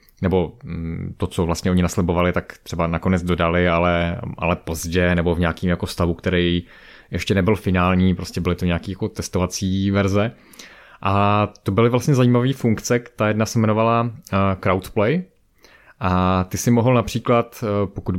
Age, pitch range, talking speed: 20-39, 90-105 Hz, 150 wpm